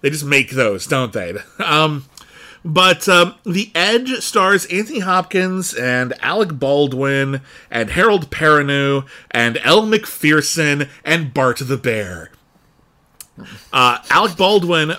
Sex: male